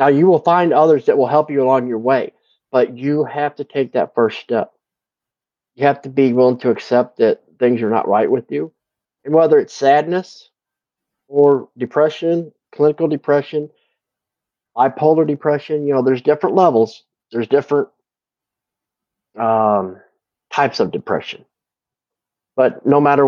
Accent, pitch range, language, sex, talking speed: American, 125-150 Hz, English, male, 150 wpm